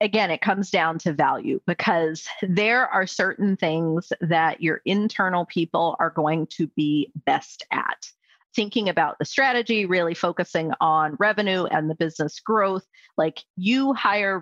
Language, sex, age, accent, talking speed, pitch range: English, female, 30-49, American, 150 wpm, 165-210 Hz